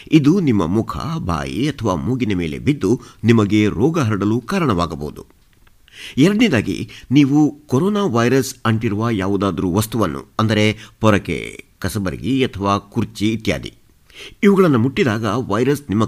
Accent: native